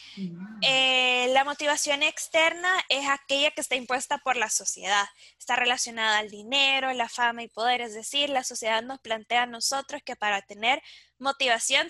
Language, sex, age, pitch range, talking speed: Spanish, female, 10-29, 245-290 Hz, 160 wpm